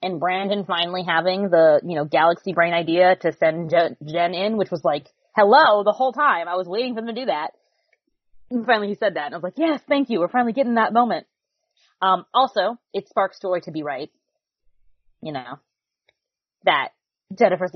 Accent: American